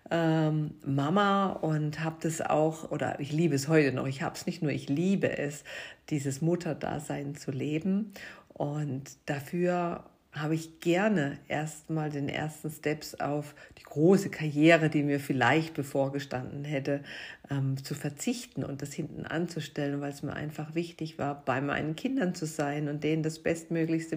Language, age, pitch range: German, 50-69, 150-170 Hz